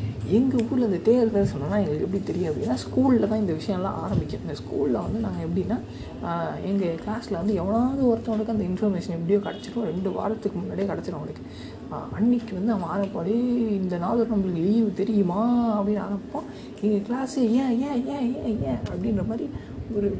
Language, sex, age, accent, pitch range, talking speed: Tamil, female, 20-39, native, 200-230 Hz, 150 wpm